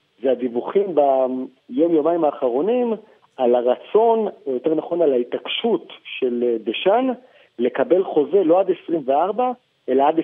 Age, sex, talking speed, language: 50-69, male, 115 wpm, Hebrew